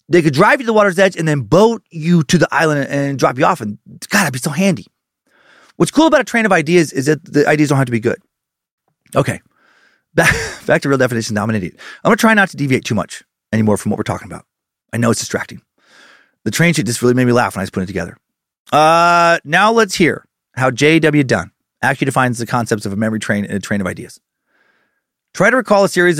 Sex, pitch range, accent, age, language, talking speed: male, 120-175 Hz, American, 30-49, English, 250 wpm